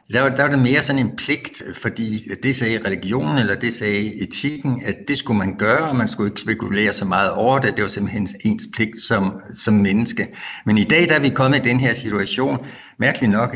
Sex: male